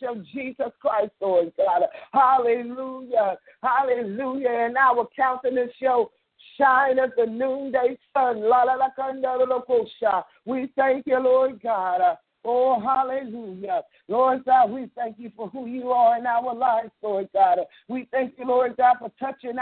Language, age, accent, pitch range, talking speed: English, 50-69, American, 225-260 Hz, 145 wpm